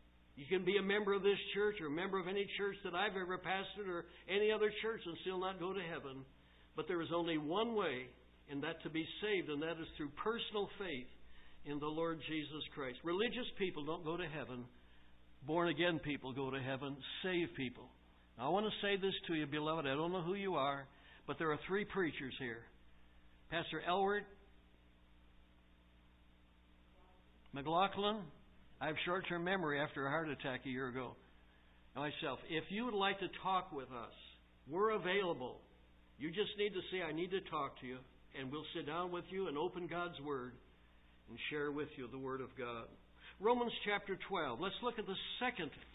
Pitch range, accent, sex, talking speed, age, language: 125-190 Hz, American, male, 190 wpm, 60-79, English